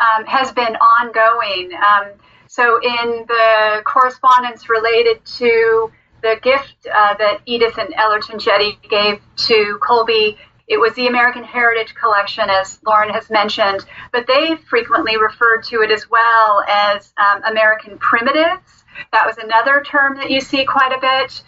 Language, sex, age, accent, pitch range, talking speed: English, female, 30-49, American, 220-260 Hz, 150 wpm